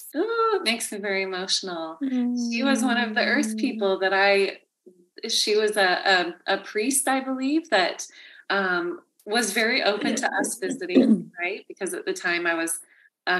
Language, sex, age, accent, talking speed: English, female, 30-49, American, 175 wpm